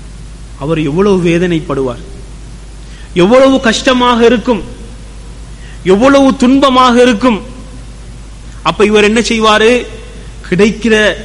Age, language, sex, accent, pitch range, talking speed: 30-49, Tamil, male, native, 160-255 Hz, 65 wpm